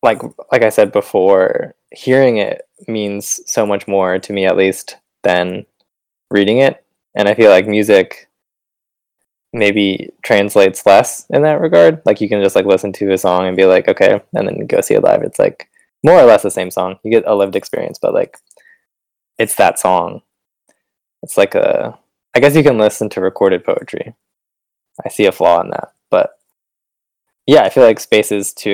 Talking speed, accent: 190 wpm, American